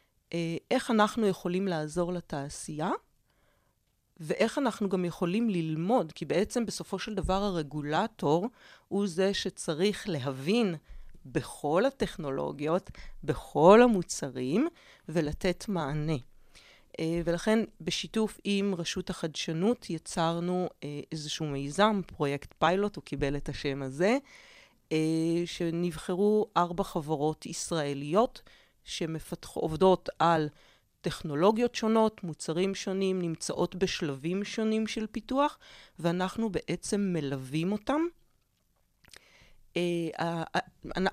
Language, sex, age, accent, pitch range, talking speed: Hebrew, female, 40-59, native, 160-205 Hz, 90 wpm